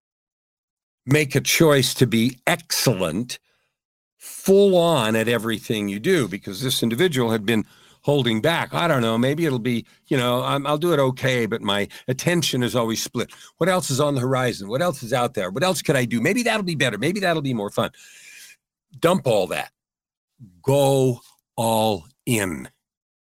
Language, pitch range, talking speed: English, 115-145 Hz, 175 wpm